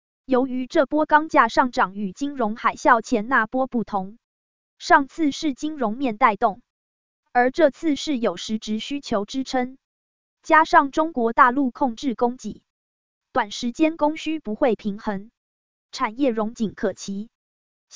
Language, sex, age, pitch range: Chinese, female, 20-39, 225-290 Hz